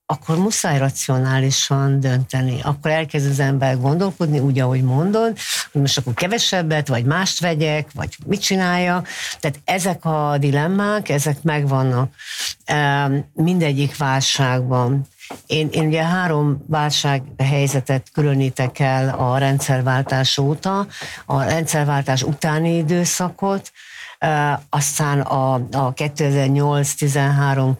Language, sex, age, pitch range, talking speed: Hungarian, female, 60-79, 135-160 Hz, 105 wpm